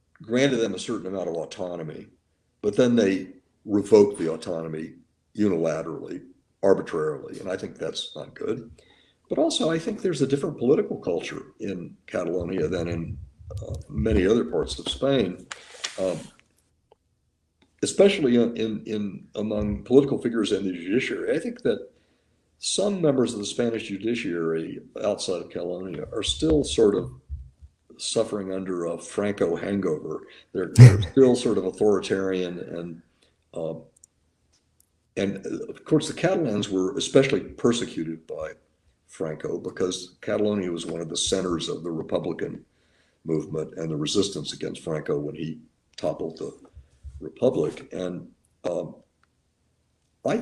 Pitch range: 80-120 Hz